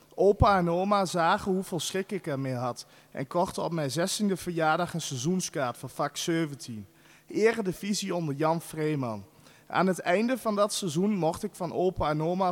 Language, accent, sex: Dutch, Dutch, male